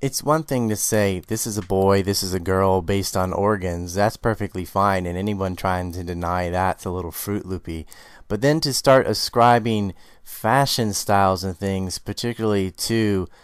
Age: 30-49